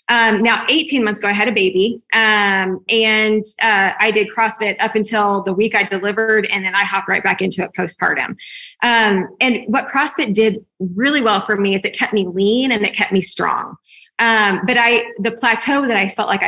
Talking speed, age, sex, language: 210 wpm, 20-39, female, English